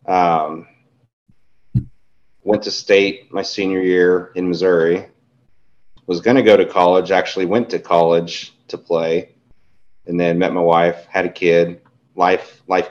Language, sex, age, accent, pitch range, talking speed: English, male, 30-49, American, 85-105 Hz, 145 wpm